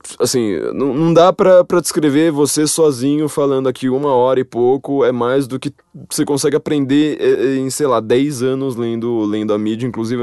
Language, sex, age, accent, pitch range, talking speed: Portuguese, male, 20-39, Brazilian, 115-150 Hz, 180 wpm